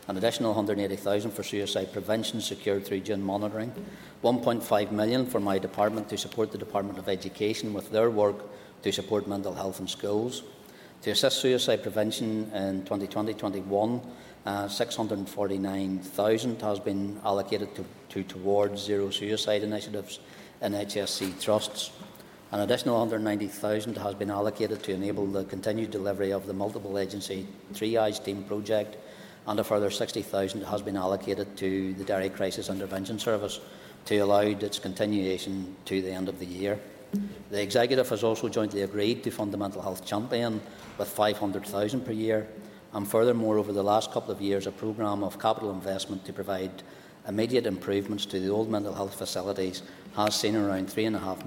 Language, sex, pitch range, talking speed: English, male, 100-110 Hz, 155 wpm